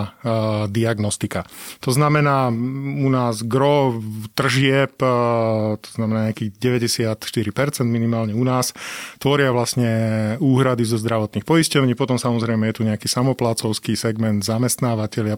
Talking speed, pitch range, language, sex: 110 wpm, 110-135 Hz, Slovak, male